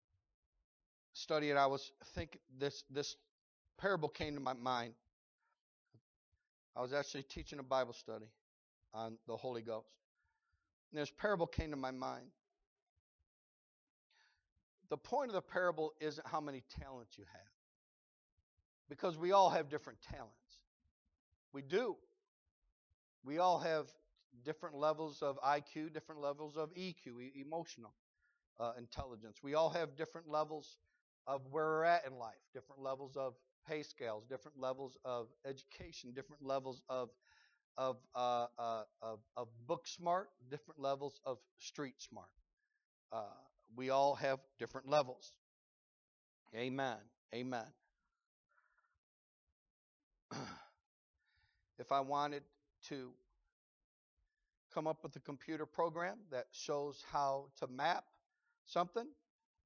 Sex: male